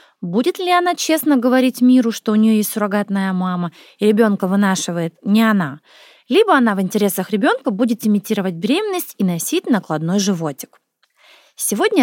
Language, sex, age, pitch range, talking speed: Russian, female, 20-39, 200-295 Hz, 150 wpm